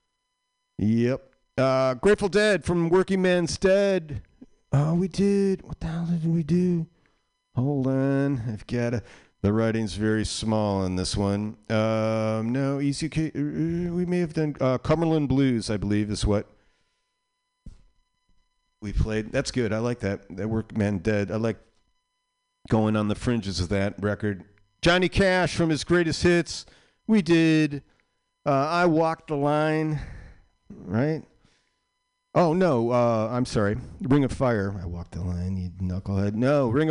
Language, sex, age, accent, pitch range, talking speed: English, male, 40-59, American, 115-170 Hz, 150 wpm